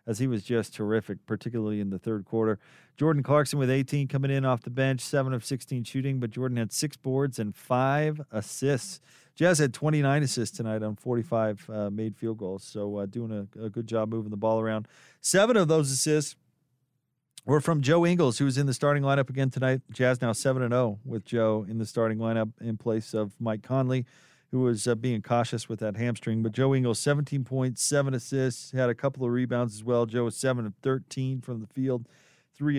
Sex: male